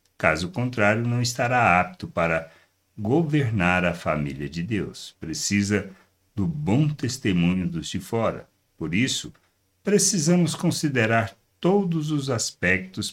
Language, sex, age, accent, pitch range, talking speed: Portuguese, male, 60-79, Brazilian, 95-140 Hz, 115 wpm